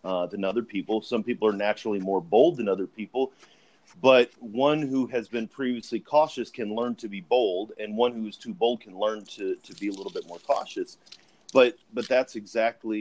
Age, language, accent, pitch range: 30-49, English, American, 105-145 Hz